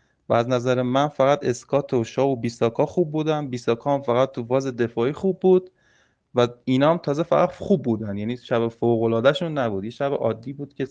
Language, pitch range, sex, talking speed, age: Persian, 115-145 Hz, male, 195 wpm, 20-39